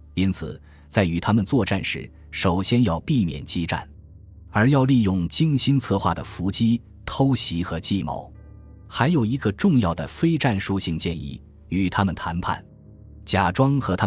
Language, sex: Chinese, male